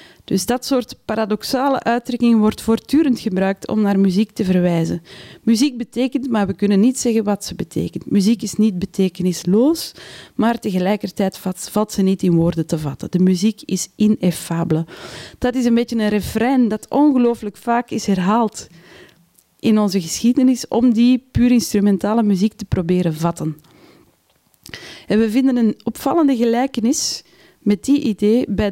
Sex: female